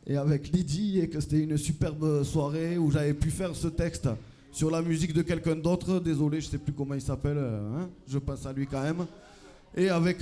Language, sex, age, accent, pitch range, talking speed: French, male, 20-39, French, 145-170 Hz, 225 wpm